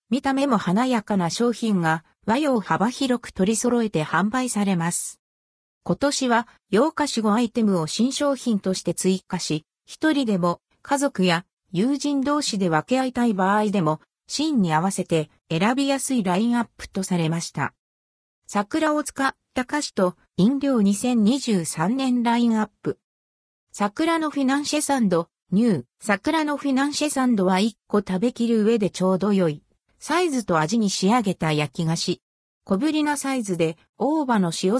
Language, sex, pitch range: Japanese, female, 180-260 Hz